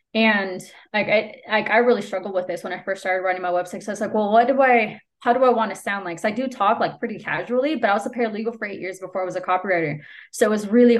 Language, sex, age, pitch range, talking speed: English, female, 20-39, 185-235 Hz, 300 wpm